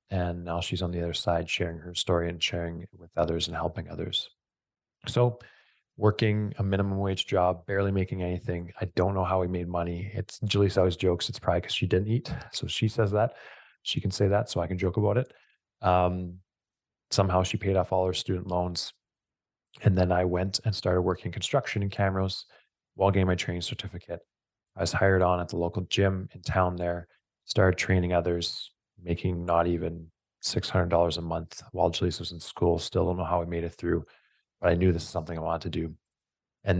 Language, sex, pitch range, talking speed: English, male, 85-105 Hz, 205 wpm